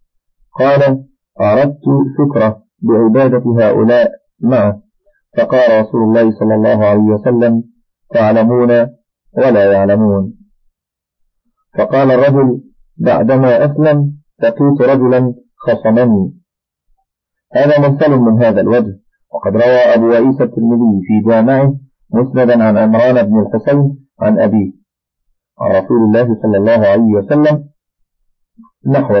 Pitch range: 115-145 Hz